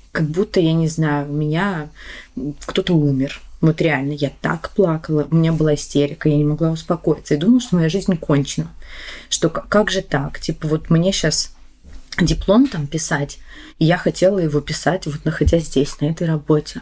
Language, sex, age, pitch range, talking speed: Russian, female, 20-39, 150-185 Hz, 180 wpm